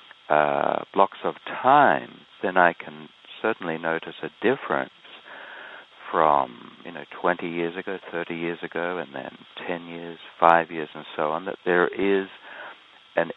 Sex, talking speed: male, 150 wpm